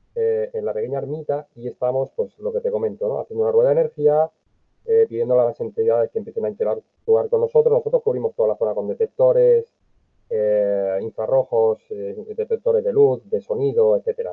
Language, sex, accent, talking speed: Spanish, male, Spanish, 185 wpm